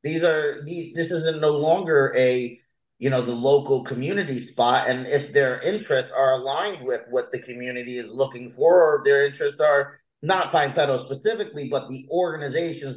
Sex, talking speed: male, 175 wpm